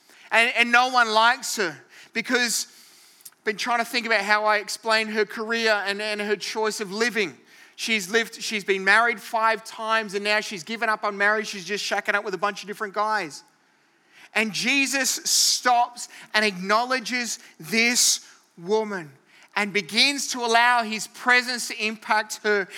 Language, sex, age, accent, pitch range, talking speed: English, male, 30-49, Australian, 220-265 Hz, 170 wpm